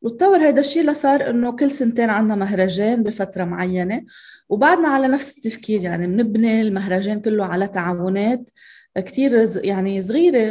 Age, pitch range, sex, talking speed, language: 20-39, 195-245 Hz, female, 135 wpm, Arabic